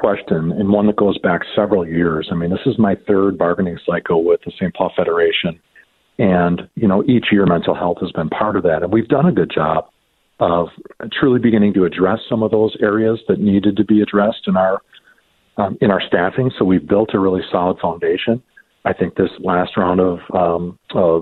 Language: English